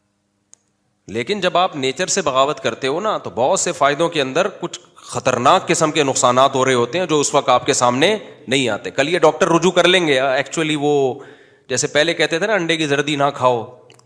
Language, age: Urdu, 30-49